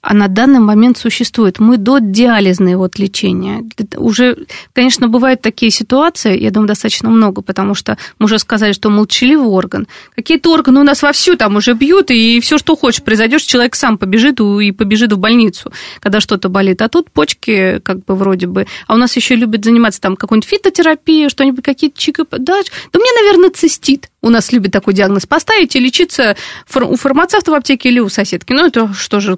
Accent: native